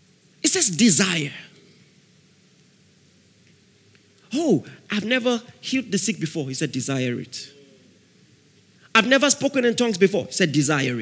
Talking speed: 125 wpm